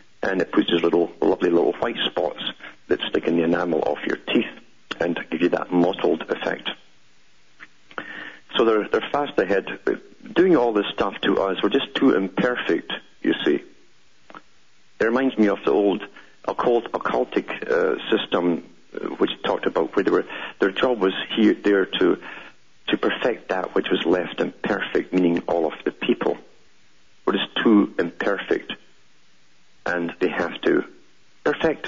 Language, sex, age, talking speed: English, male, 50-69, 155 wpm